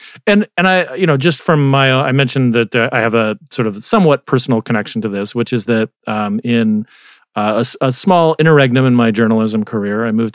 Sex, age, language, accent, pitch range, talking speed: male, 40-59, English, American, 105-135 Hz, 225 wpm